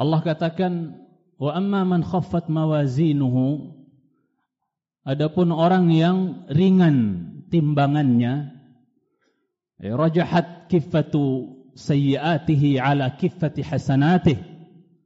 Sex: male